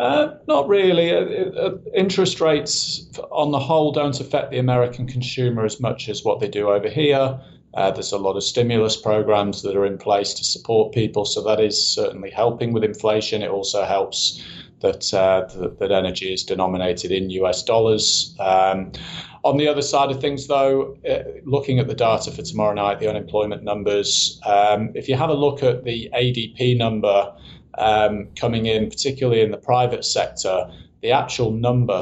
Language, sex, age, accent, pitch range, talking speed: English, male, 30-49, British, 105-135 Hz, 180 wpm